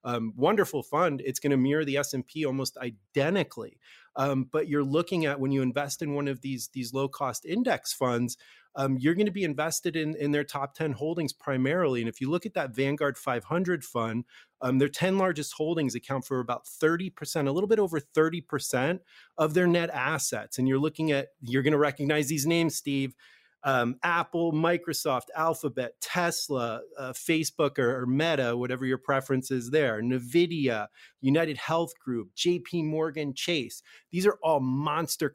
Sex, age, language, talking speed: male, 30-49, English, 175 wpm